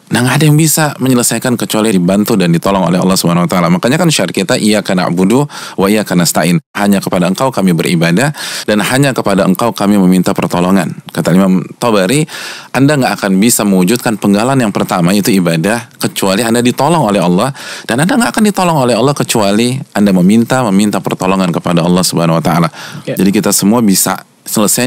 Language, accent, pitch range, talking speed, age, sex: Indonesian, native, 95-120 Hz, 175 wpm, 20-39, male